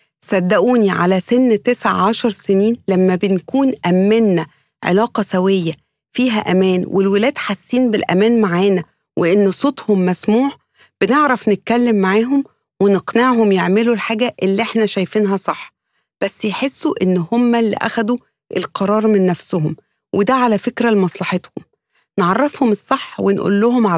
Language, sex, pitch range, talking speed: English, female, 190-240 Hz, 115 wpm